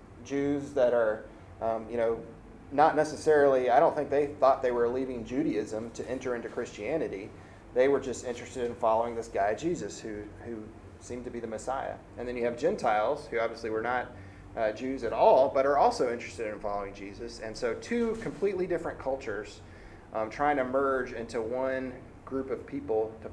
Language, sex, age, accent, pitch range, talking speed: English, male, 30-49, American, 105-125 Hz, 190 wpm